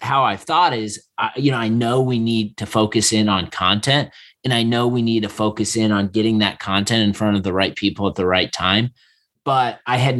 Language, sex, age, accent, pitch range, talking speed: English, male, 30-49, American, 105-130 Hz, 240 wpm